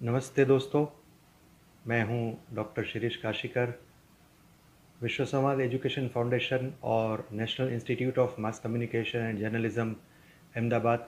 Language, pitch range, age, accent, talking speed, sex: Hindi, 115-135 Hz, 30-49, native, 110 wpm, male